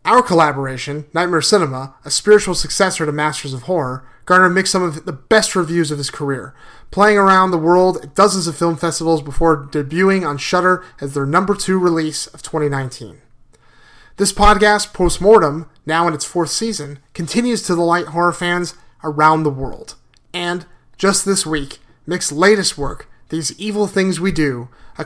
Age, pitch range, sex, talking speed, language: 30-49, 145-190 Hz, male, 170 wpm, English